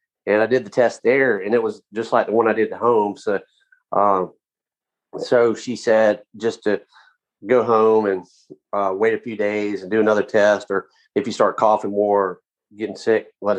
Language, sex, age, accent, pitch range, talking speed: English, male, 40-59, American, 105-130 Hz, 205 wpm